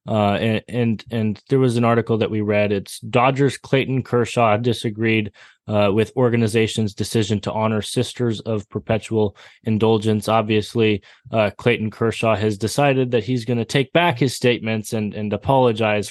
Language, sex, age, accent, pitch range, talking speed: English, male, 20-39, American, 110-130 Hz, 160 wpm